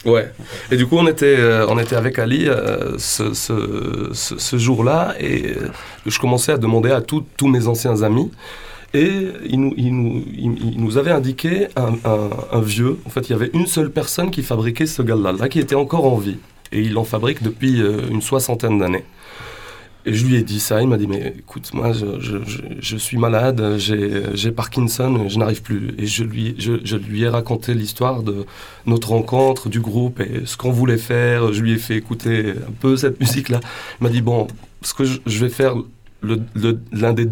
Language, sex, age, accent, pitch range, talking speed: French, male, 30-49, French, 110-130 Hz, 215 wpm